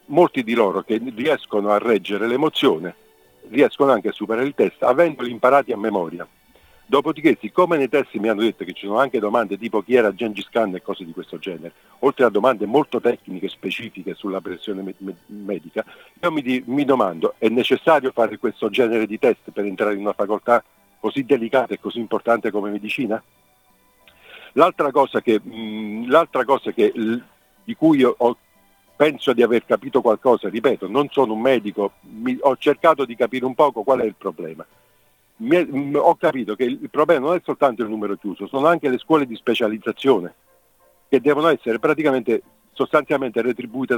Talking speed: 170 wpm